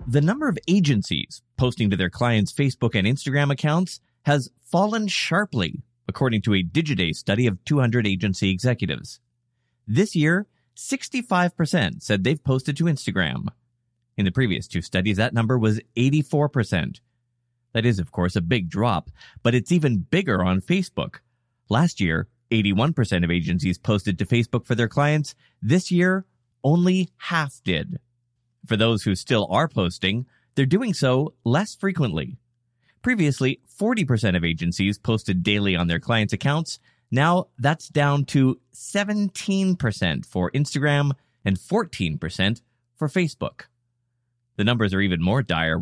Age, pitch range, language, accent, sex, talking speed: 30-49, 105-145 Hz, English, American, male, 140 wpm